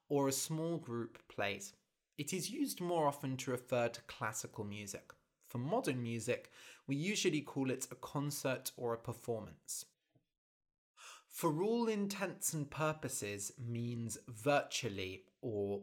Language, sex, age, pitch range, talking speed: English, male, 20-39, 115-155 Hz, 135 wpm